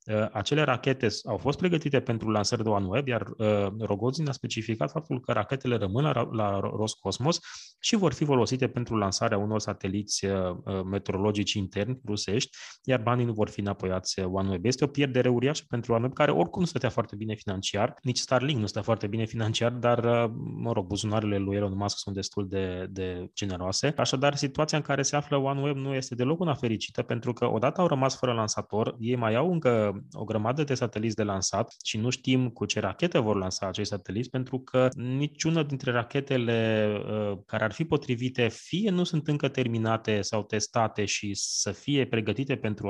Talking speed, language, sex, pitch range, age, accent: 180 wpm, Romanian, male, 105-130 Hz, 20-39, native